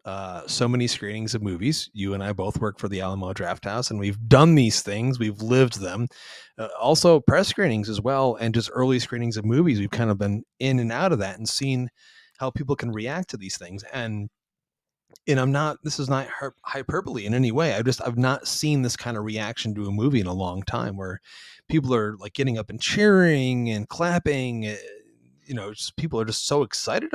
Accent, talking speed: American, 220 wpm